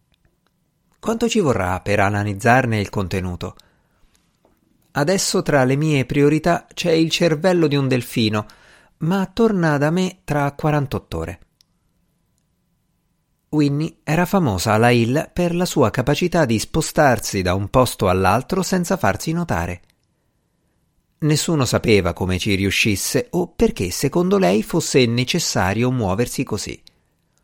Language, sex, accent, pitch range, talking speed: Italian, male, native, 100-155 Hz, 120 wpm